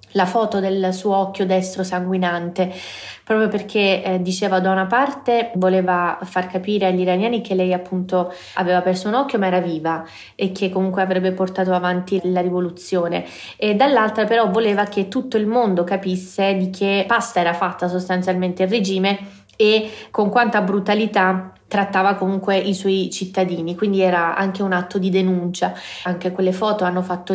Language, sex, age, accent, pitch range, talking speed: Italian, female, 20-39, native, 185-205 Hz, 165 wpm